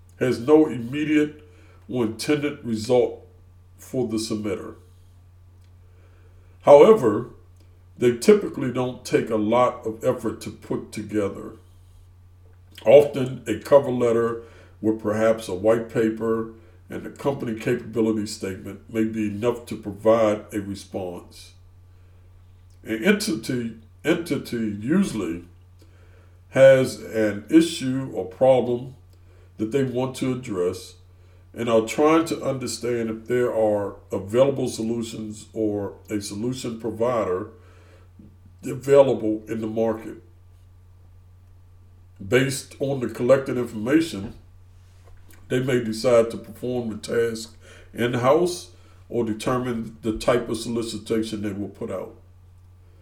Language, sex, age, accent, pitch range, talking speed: English, male, 60-79, American, 90-120 Hz, 110 wpm